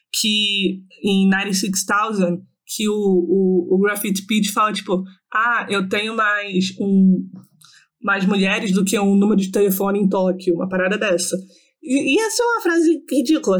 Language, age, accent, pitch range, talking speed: Portuguese, 20-39, Brazilian, 190-225 Hz, 160 wpm